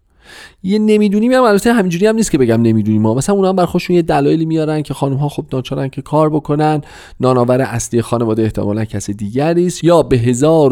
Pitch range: 100-165 Hz